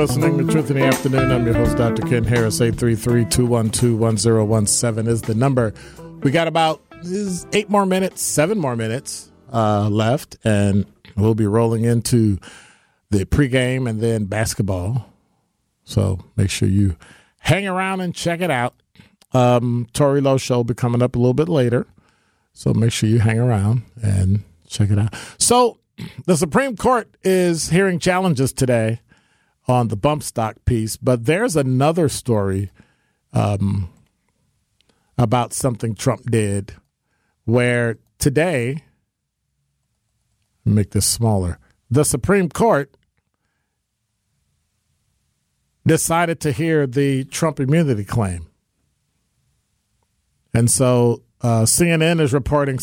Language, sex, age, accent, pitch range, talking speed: English, male, 40-59, American, 110-150 Hz, 130 wpm